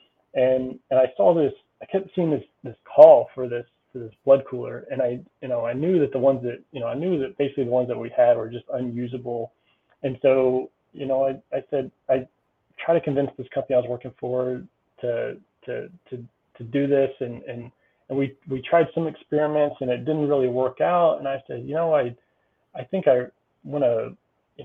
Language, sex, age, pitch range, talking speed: English, male, 30-49, 125-140 Hz, 220 wpm